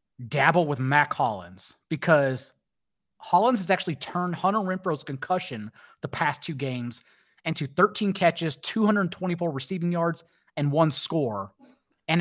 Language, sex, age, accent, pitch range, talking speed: English, male, 30-49, American, 135-180 Hz, 130 wpm